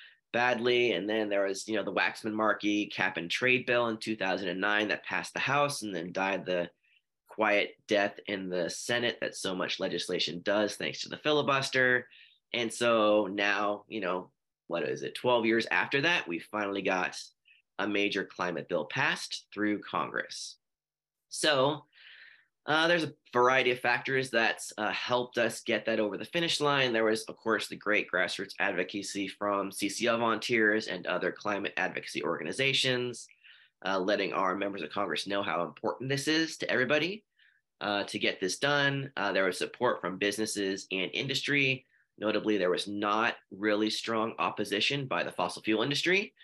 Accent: American